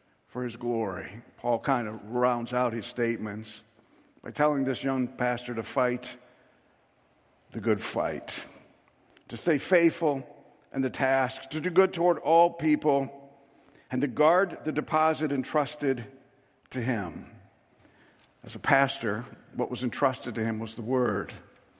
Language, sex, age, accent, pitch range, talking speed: English, male, 50-69, American, 125-160 Hz, 140 wpm